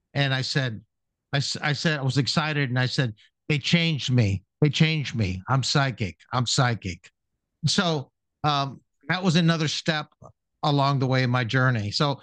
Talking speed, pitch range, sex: 170 wpm, 115-150 Hz, male